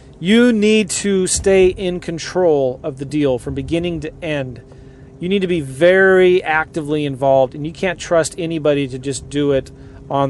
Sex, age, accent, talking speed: male, 40-59, American, 175 wpm